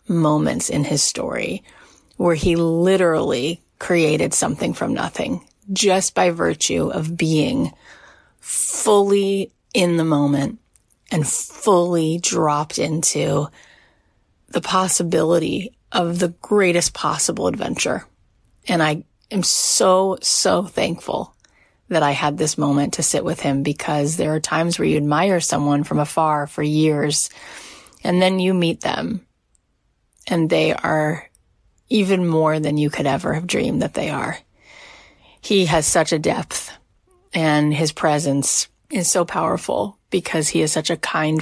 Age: 30-49